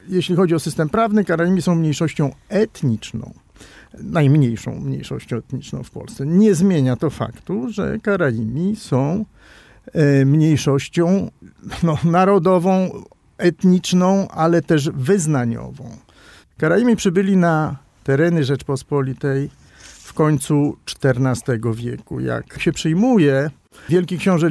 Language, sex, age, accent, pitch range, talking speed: Polish, male, 50-69, native, 130-180 Hz, 100 wpm